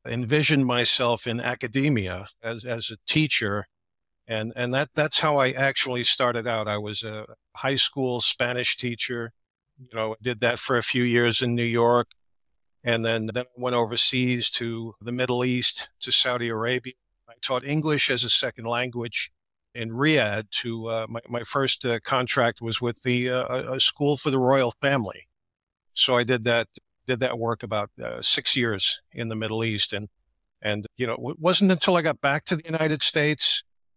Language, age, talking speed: English, 50-69, 180 wpm